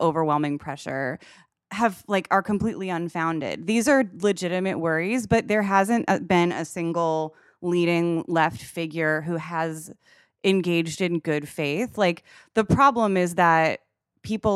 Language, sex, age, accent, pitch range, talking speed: English, female, 20-39, American, 160-205 Hz, 130 wpm